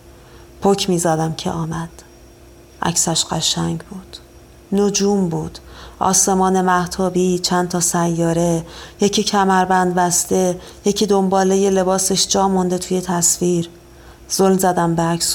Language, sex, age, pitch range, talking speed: Persian, female, 40-59, 170-195 Hz, 110 wpm